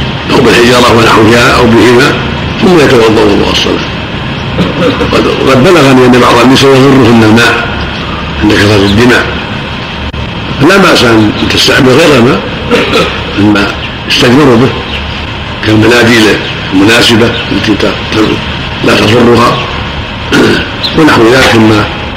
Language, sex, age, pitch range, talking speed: Arabic, male, 60-79, 105-120 Hz, 95 wpm